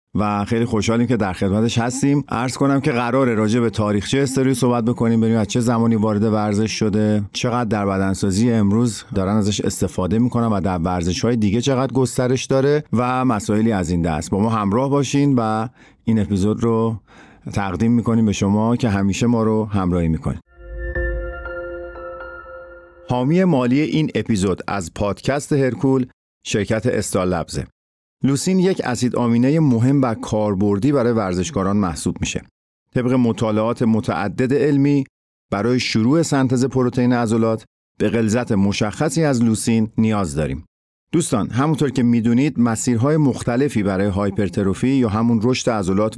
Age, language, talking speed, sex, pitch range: 50-69, Persian, 145 wpm, male, 100-130 Hz